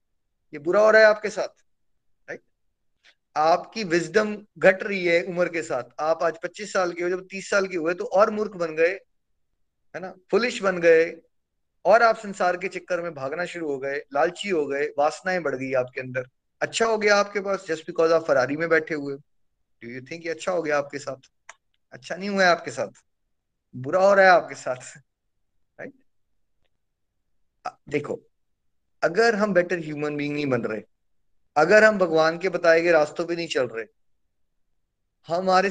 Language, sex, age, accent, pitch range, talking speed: Hindi, male, 20-39, native, 150-185 Hz, 185 wpm